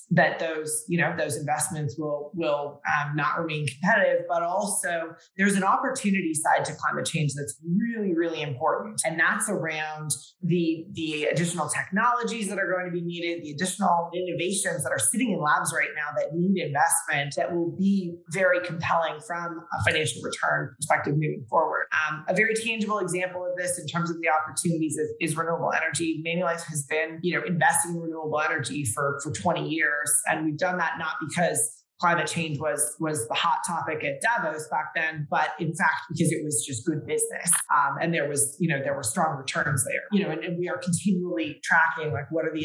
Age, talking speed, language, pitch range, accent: 30-49, 200 wpm, English, 150-175 Hz, American